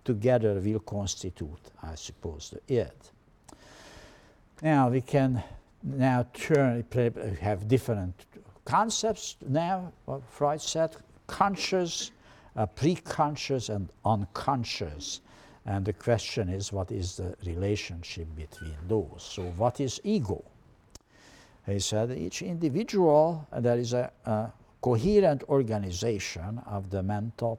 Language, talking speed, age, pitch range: English, 110 wpm, 60-79, 100-145 Hz